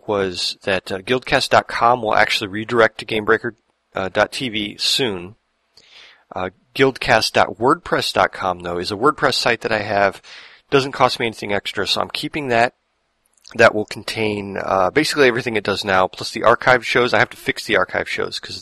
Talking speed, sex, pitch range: 165 wpm, male, 100-120 Hz